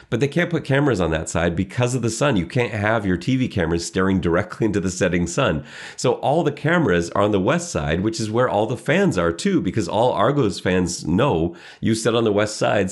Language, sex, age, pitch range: English, male, 30-49, 90-115 Hz